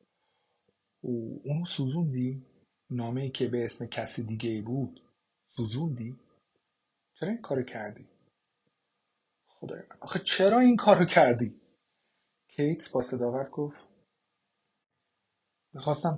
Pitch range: 125-175 Hz